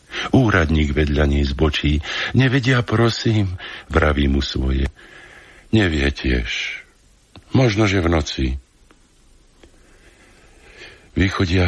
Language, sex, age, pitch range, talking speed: Slovak, male, 60-79, 70-95 Hz, 75 wpm